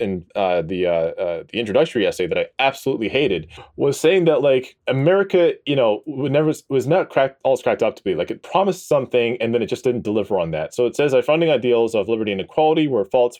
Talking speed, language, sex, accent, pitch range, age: 235 wpm, English, male, American, 110-155 Hz, 20-39